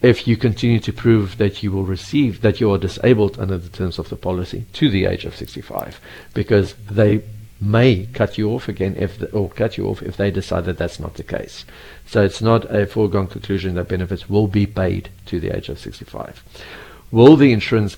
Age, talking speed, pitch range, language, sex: 50-69, 205 wpm, 95-110 Hz, English, male